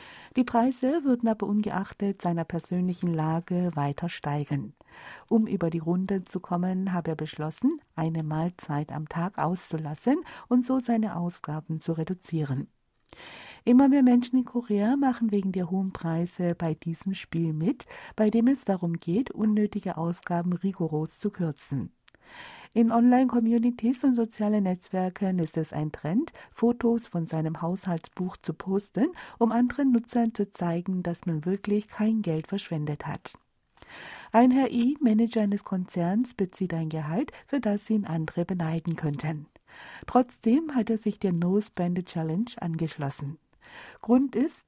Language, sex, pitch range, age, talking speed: German, female, 165-230 Hz, 50-69, 145 wpm